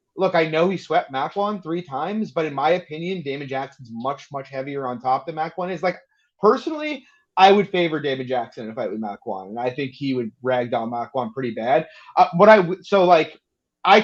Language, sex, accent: English, male, American